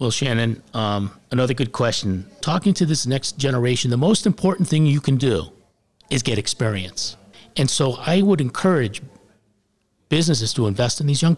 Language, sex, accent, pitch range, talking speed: English, male, American, 110-150 Hz, 170 wpm